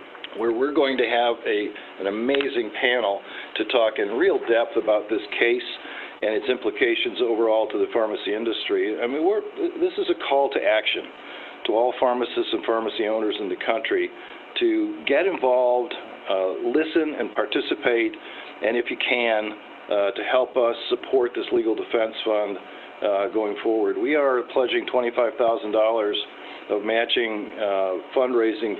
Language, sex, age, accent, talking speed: English, male, 50-69, American, 155 wpm